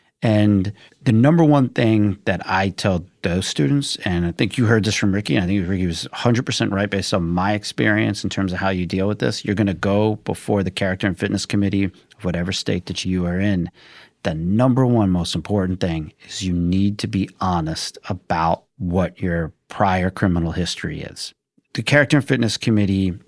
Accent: American